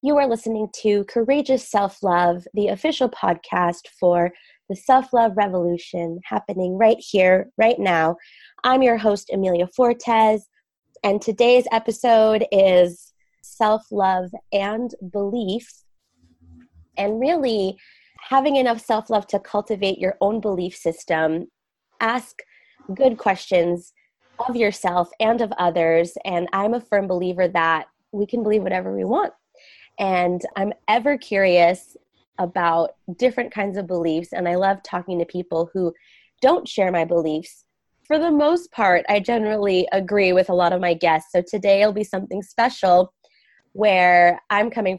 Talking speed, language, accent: 135 wpm, English, American